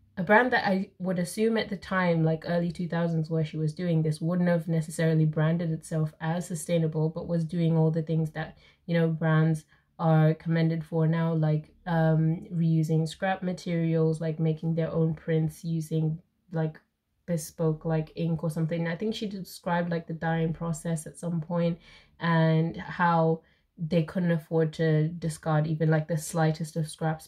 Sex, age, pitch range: female, 20-39, 160-175 Hz